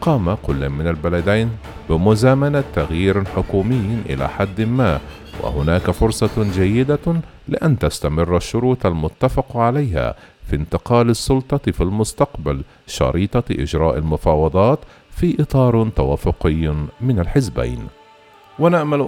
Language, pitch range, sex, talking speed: Arabic, 85-125 Hz, male, 100 wpm